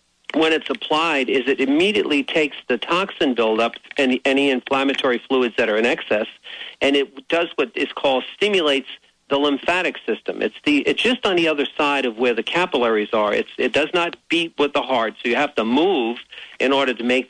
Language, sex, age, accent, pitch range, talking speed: English, male, 50-69, American, 125-145 Hz, 200 wpm